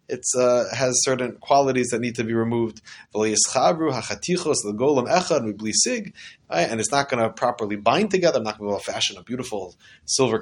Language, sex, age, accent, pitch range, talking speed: English, male, 30-49, Canadian, 110-150 Hz, 150 wpm